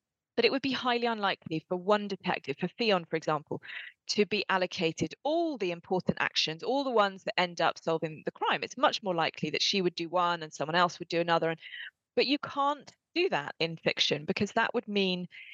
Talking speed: 210 wpm